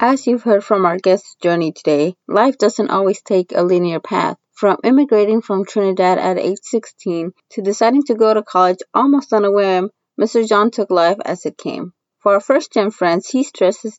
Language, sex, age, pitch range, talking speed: English, female, 20-39, 190-230 Hz, 195 wpm